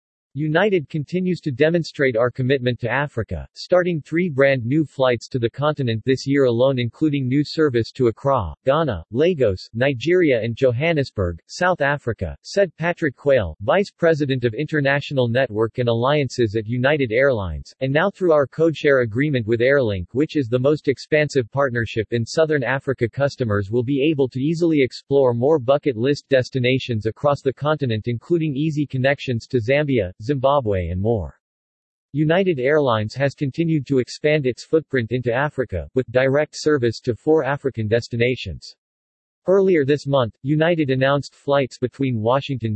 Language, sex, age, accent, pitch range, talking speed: English, male, 40-59, American, 120-150 Hz, 150 wpm